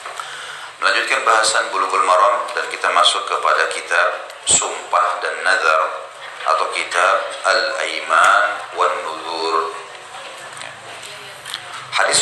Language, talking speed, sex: Indonesian, 90 wpm, male